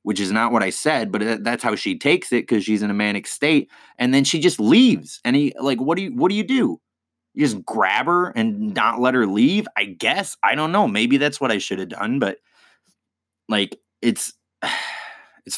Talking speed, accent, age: 225 wpm, American, 20-39